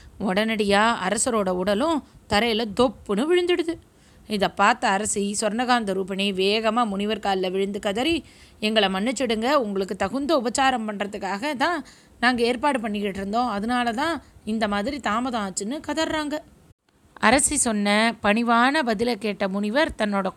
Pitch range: 200-265 Hz